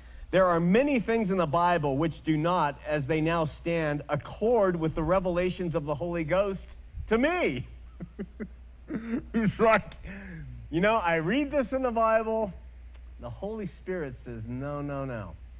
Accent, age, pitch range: American, 40-59, 130-185 Hz